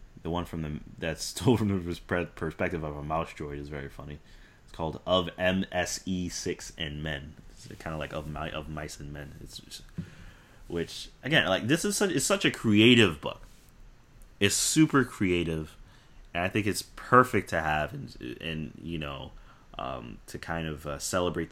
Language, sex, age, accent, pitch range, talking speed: English, male, 30-49, American, 75-95 Hz, 185 wpm